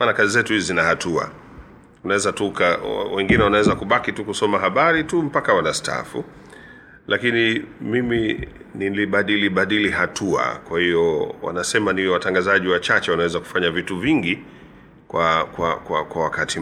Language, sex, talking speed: Swahili, male, 135 wpm